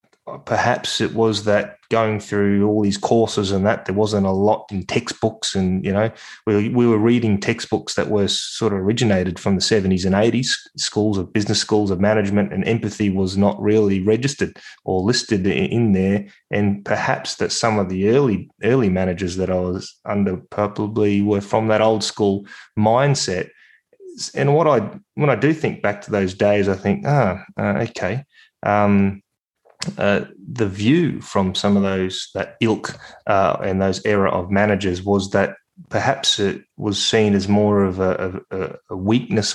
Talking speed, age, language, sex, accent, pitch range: 180 wpm, 20-39, English, male, Australian, 100-110 Hz